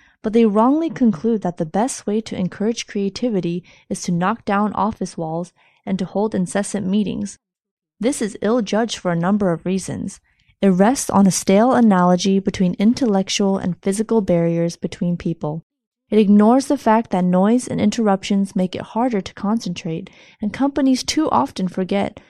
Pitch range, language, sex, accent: 185-230 Hz, Chinese, female, American